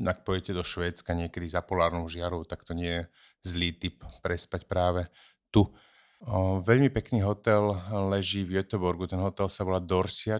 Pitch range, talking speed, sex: 90-100 Hz, 165 wpm, male